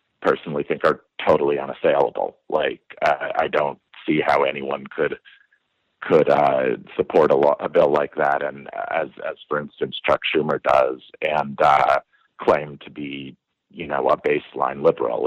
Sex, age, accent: male, 50-69, American